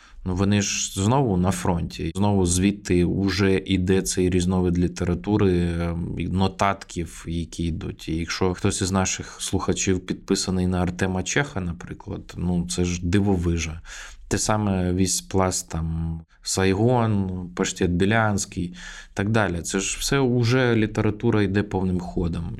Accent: native